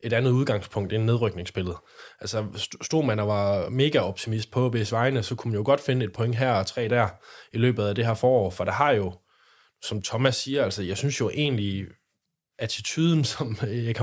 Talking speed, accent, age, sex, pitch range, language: 195 wpm, native, 20-39, male, 105-125 Hz, Danish